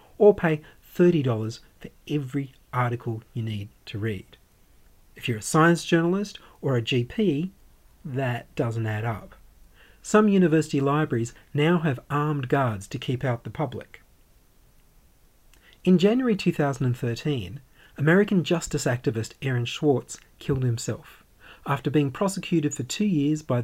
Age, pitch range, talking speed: 40-59, 120-165 Hz, 130 wpm